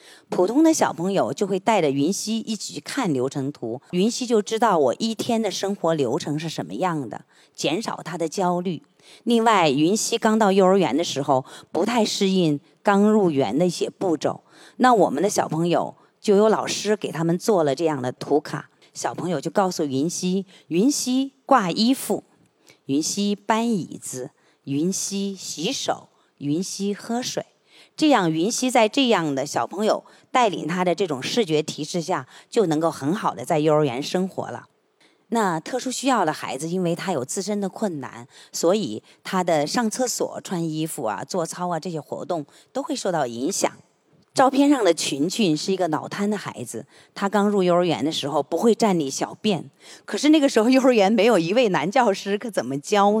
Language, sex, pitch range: Chinese, female, 155-215 Hz